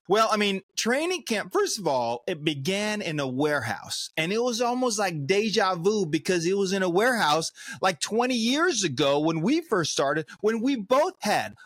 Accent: American